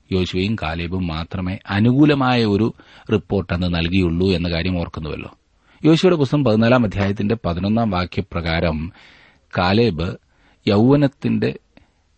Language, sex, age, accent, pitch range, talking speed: Malayalam, male, 40-59, native, 90-115 Hz, 90 wpm